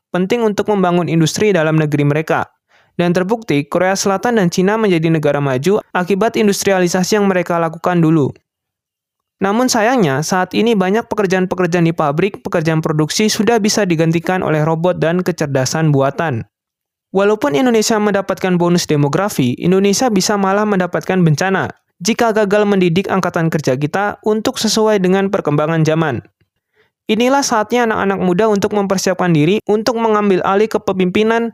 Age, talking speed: 20-39, 135 wpm